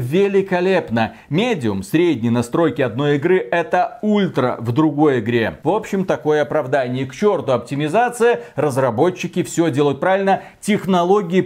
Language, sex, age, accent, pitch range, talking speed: Russian, male, 40-59, native, 155-205 Hz, 120 wpm